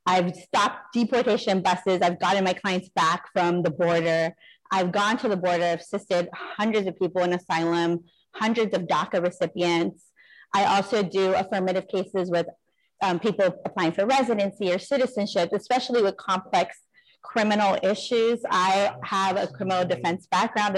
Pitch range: 180-215 Hz